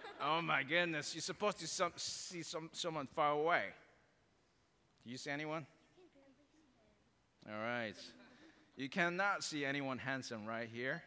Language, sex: Korean, male